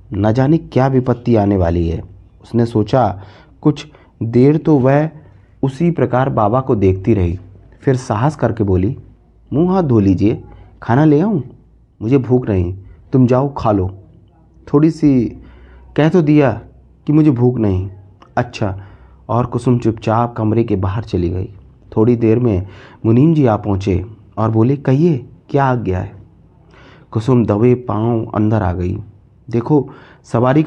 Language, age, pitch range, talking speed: Hindi, 30-49, 100-135 Hz, 150 wpm